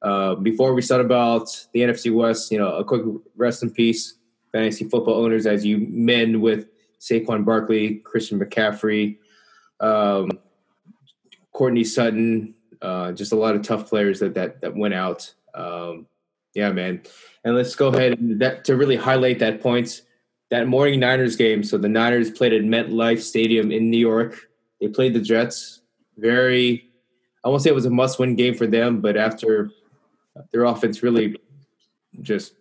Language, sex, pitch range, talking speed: English, male, 110-125 Hz, 165 wpm